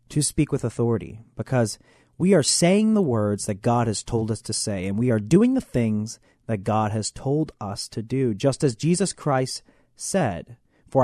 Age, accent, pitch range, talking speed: 30-49, American, 110-165 Hz, 195 wpm